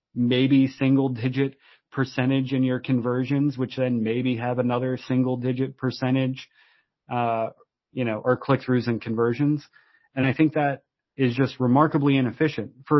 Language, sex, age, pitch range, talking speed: English, male, 30-49, 115-135 Hz, 150 wpm